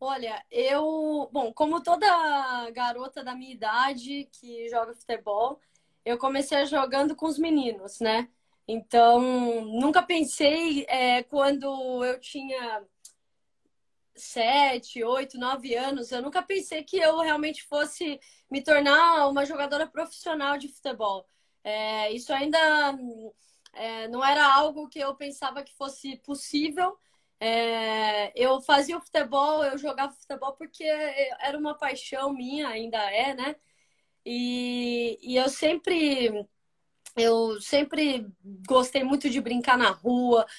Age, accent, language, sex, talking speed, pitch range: 10-29, Brazilian, Portuguese, female, 120 wpm, 245-295 Hz